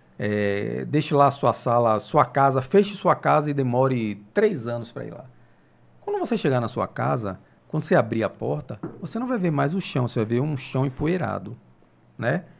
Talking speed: 205 wpm